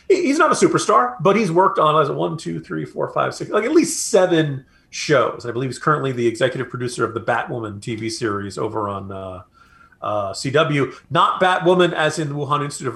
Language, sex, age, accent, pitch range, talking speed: English, male, 40-59, American, 125-175 Hz, 210 wpm